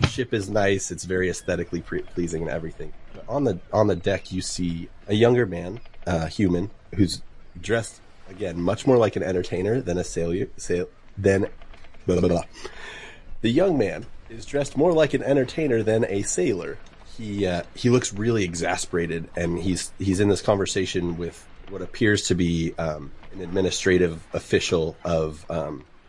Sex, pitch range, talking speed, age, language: male, 85-115 Hz, 170 wpm, 30-49, English